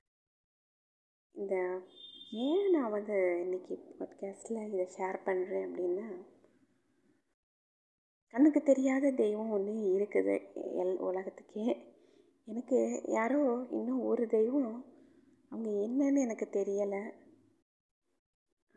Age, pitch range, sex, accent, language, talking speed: 20-39, 195-250 Hz, female, native, Tamil, 80 wpm